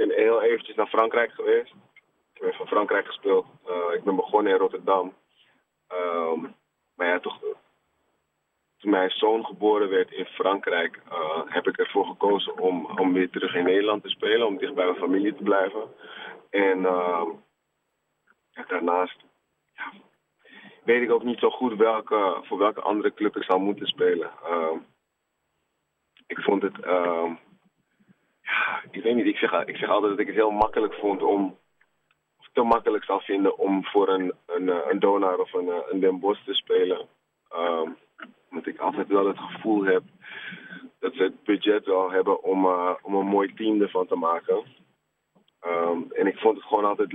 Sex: male